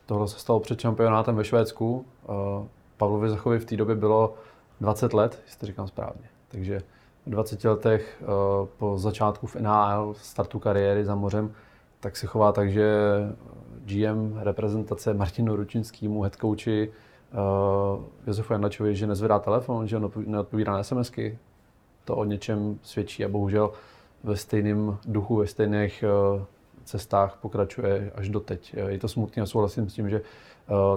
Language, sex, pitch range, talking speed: Czech, male, 100-110 Hz, 150 wpm